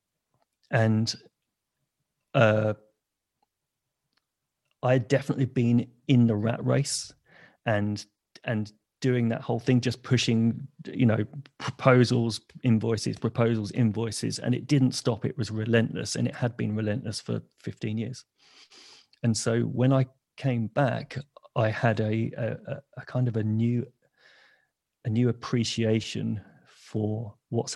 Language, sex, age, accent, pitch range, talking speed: English, male, 30-49, British, 105-125 Hz, 130 wpm